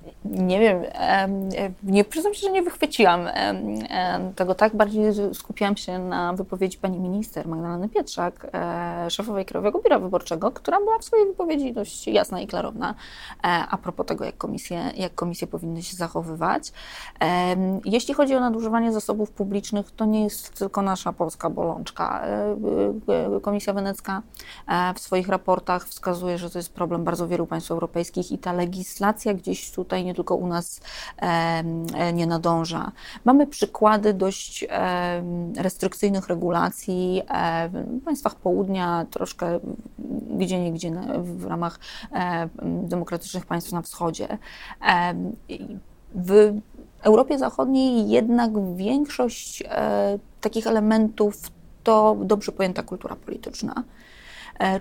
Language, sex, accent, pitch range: Polish, female, native, 175-215 Hz